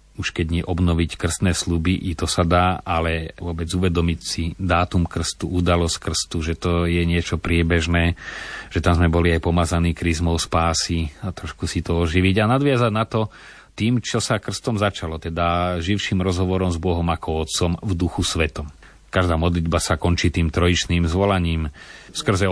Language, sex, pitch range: Slovak, male, 85-95 Hz